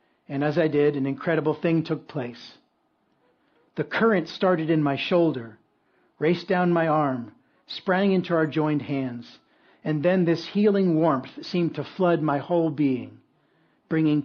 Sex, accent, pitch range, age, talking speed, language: male, American, 135-165 Hz, 50-69, 150 wpm, English